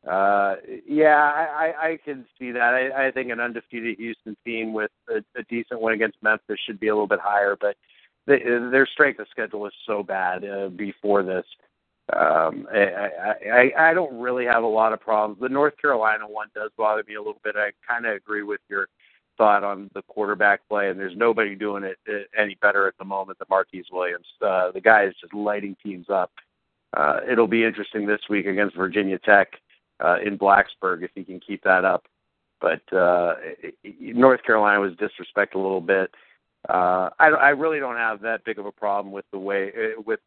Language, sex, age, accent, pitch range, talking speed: English, male, 50-69, American, 100-120 Hz, 200 wpm